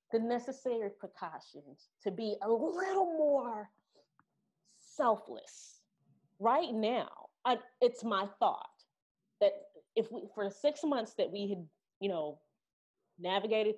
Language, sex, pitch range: English, female, 185-240 Hz